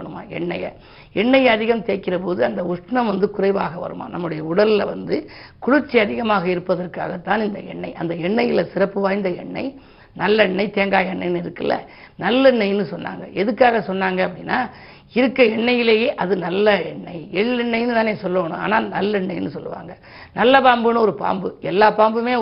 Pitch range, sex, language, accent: 195-235 Hz, female, Tamil, native